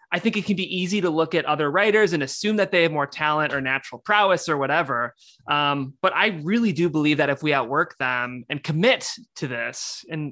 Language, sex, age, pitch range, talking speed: English, male, 20-39, 135-185 Hz, 225 wpm